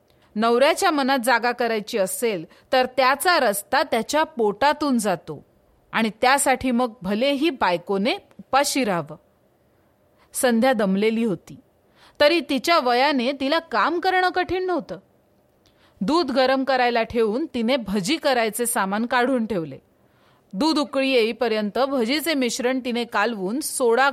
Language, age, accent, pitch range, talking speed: Marathi, 40-59, native, 220-300 Hz, 90 wpm